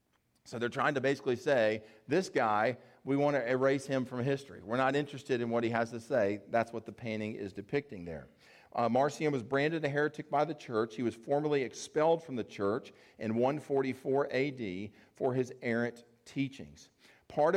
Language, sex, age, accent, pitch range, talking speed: English, male, 40-59, American, 115-140 Hz, 190 wpm